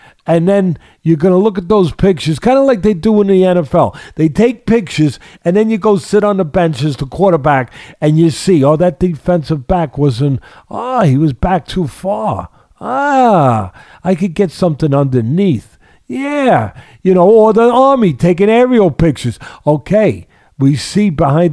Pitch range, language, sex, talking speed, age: 140-200 Hz, English, male, 175 wpm, 50-69